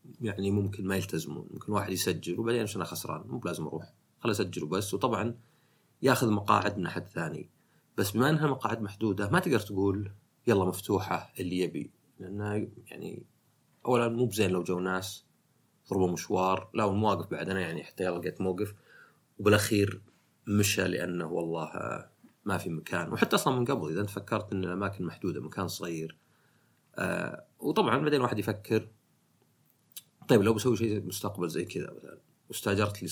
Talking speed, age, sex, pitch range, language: 155 wpm, 30-49, male, 90-110 Hz, Arabic